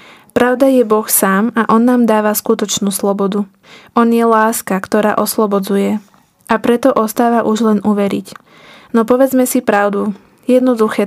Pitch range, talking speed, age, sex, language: 215-240 Hz, 140 wpm, 20-39, female, Slovak